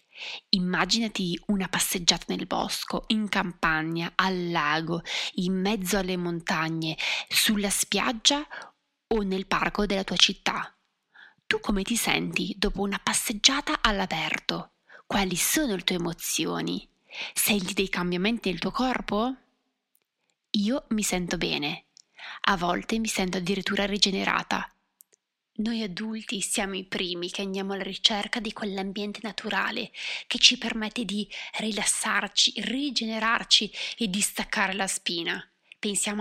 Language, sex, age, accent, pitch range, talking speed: Italian, female, 20-39, native, 190-220 Hz, 125 wpm